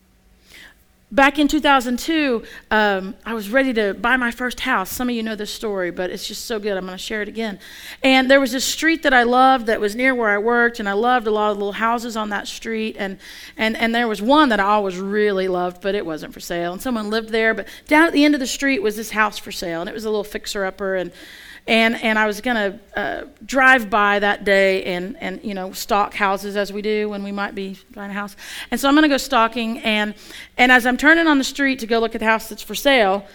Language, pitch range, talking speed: English, 200-245 Hz, 265 wpm